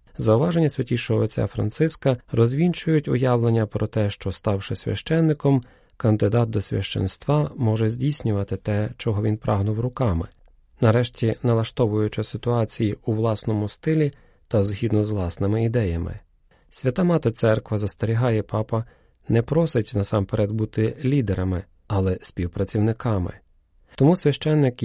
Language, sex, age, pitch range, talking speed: Ukrainian, male, 40-59, 100-120 Hz, 110 wpm